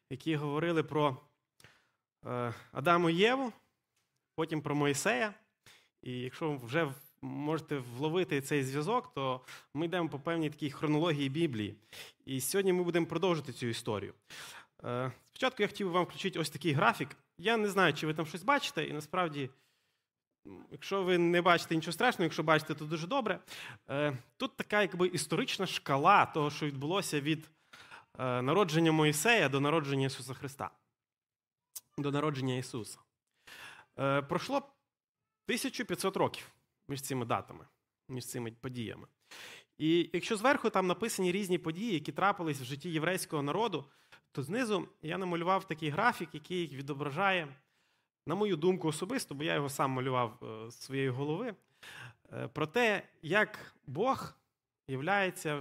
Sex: male